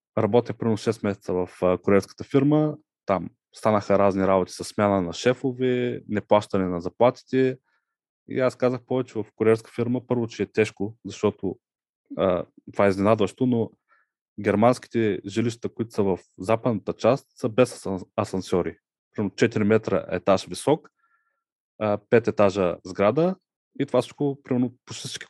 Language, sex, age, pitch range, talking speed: Bulgarian, male, 20-39, 100-130 Hz, 145 wpm